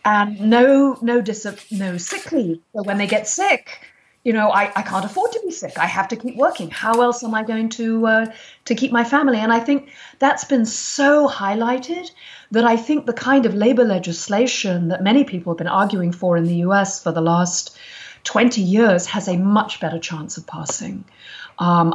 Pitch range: 175-235 Hz